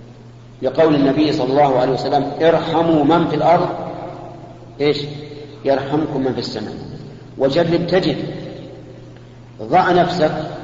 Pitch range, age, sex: 125-150 Hz, 50-69, male